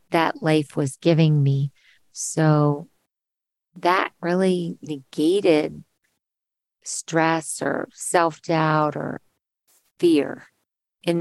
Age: 50-69